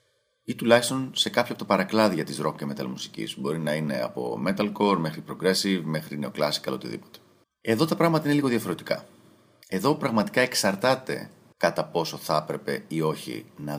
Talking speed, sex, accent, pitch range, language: 170 wpm, male, native, 80-115 Hz, Greek